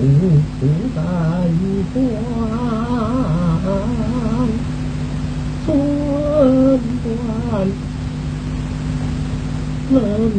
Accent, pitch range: American, 145-190 Hz